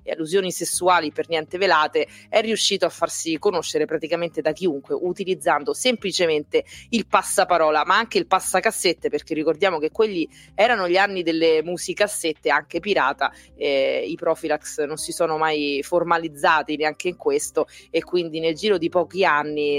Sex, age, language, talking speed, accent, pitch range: female, 30-49, Italian, 150 wpm, native, 155-200 Hz